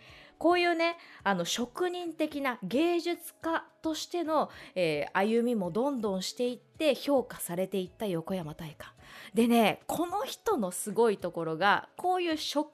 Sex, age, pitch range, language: female, 20-39, 200-325 Hz, Japanese